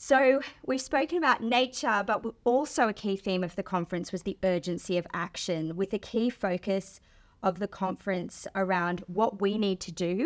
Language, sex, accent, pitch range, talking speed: English, female, Australian, 175-215 Hz, 180 wpm